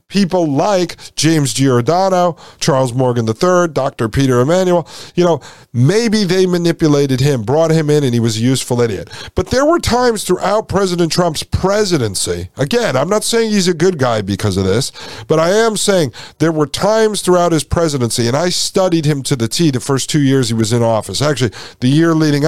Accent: American